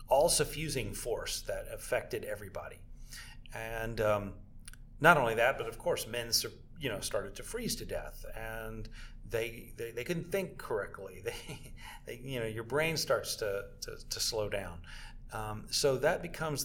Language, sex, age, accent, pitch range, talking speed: English, male, 40-59, American, 100-120 Hz, 160 wpm